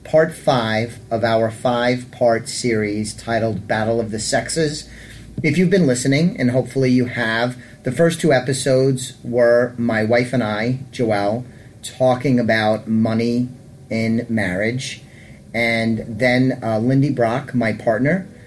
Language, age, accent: English, 30-49, American